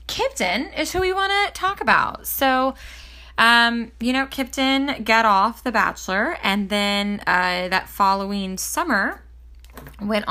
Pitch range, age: 160-220 Hz, 20-39